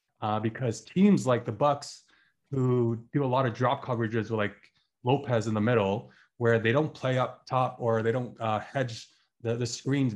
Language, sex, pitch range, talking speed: English, male, 110-130 Hz, 195 wpm